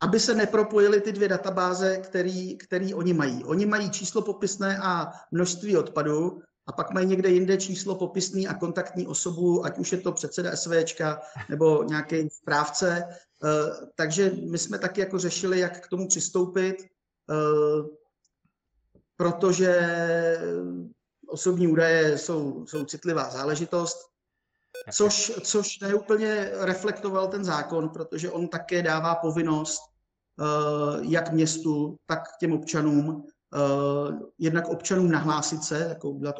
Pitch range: 150-180 Hz